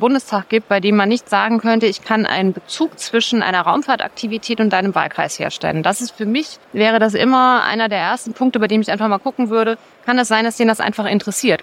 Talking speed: 235 wpm